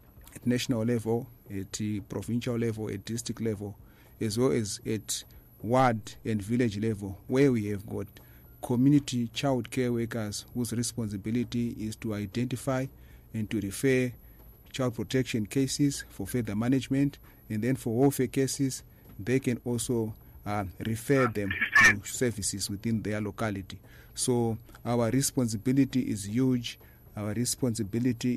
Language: English